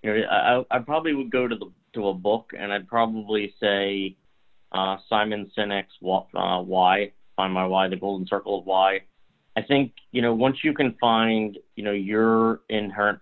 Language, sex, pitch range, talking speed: English, male, 100-110 Hz, 190 wpm